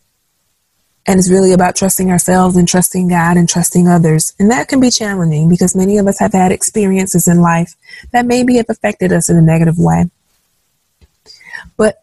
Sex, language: female, English